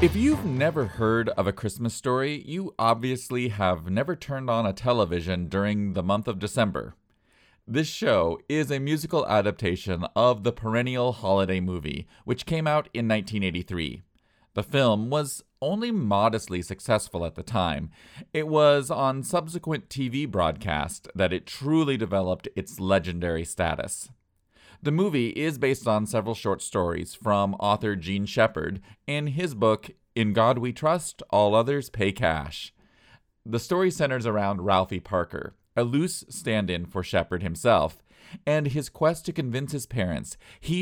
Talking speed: 150 wpm